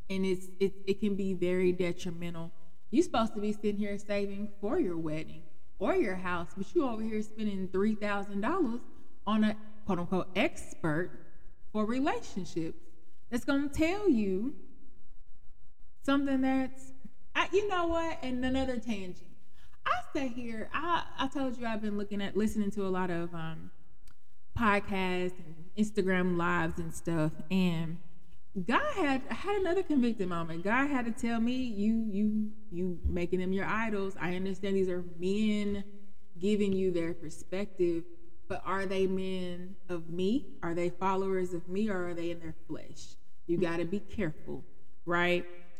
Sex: female